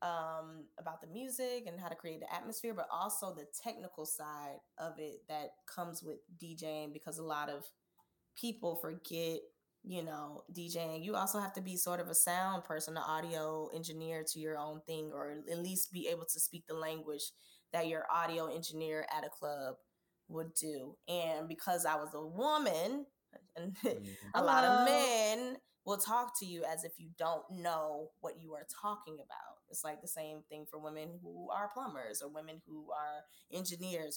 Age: 20-39